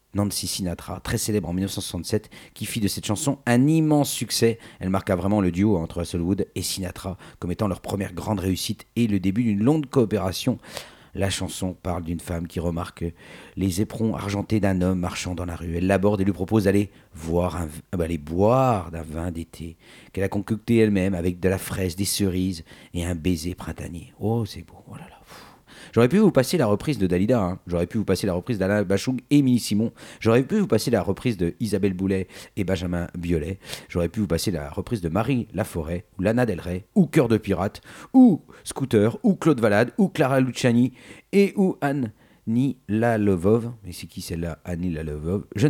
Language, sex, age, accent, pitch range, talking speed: French, male, 50-69, French, 90-110 Hz, 200 wpm